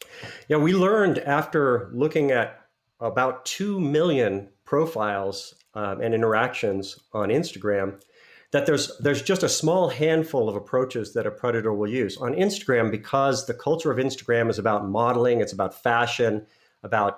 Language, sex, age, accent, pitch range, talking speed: English, male, 50-69, American, 105-135 Hz, 150 wpm